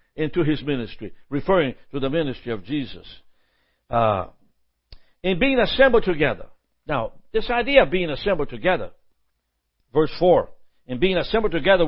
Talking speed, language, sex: 135 wpm, English, male